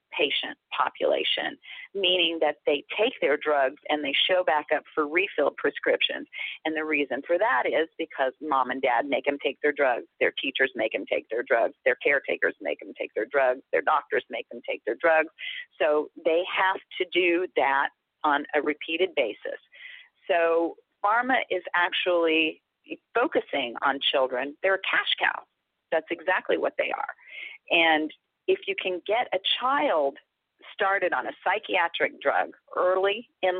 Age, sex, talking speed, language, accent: 40-59, female, 165 wpm, English, American